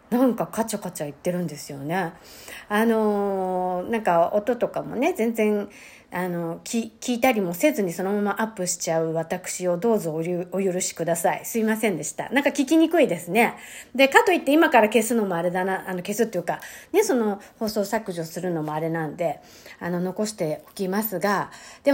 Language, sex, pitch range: Japanese, female, 175-240 Hz